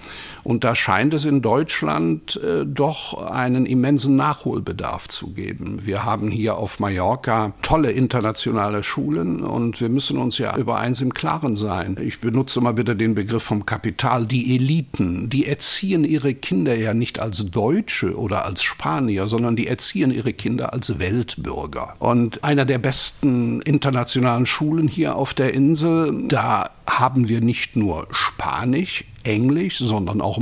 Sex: male